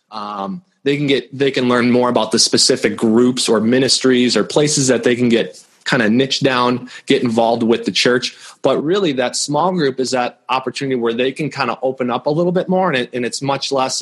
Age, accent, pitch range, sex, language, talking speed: 20-39, American, 115-135 Hz, male, English, 230 wpm